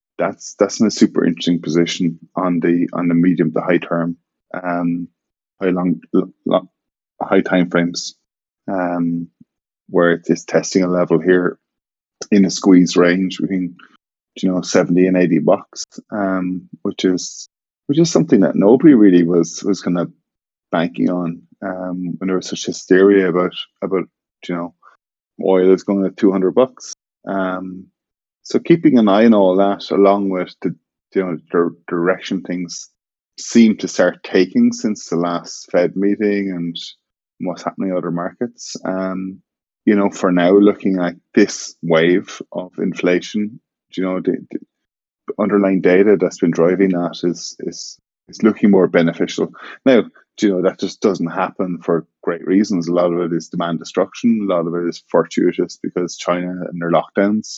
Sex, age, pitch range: male, 20-39, 85-95 Hz